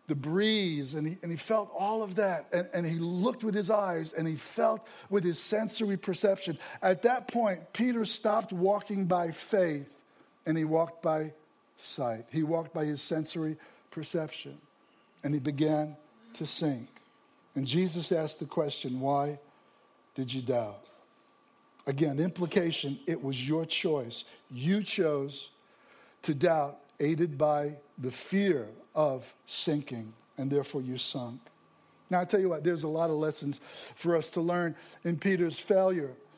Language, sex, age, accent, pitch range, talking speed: English, male, 60-79, American, 155-205 Hz, 155 wpm